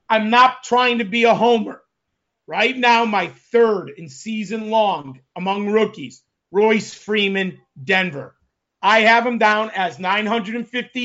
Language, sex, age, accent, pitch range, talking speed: English, male, 40-59, American, 205-235 Hz, 135 wpm